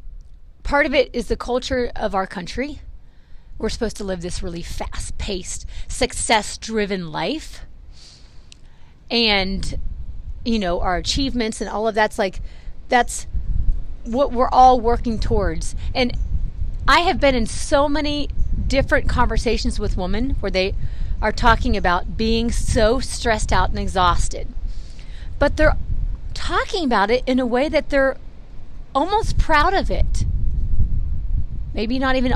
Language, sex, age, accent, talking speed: English, female, 30-49, American, 135 wpm